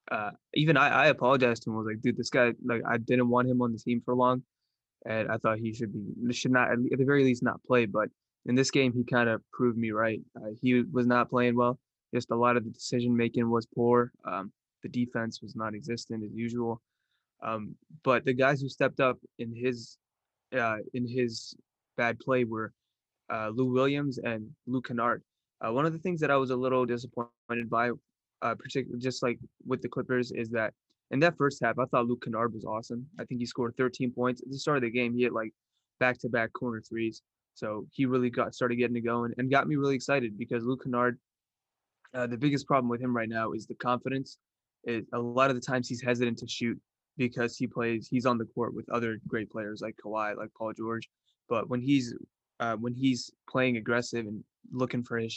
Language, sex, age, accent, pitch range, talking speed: English, male, 20-39, American, 115-130 Hz, 220 wpm